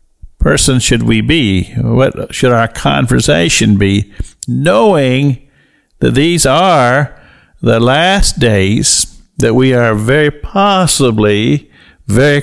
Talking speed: 105 wpm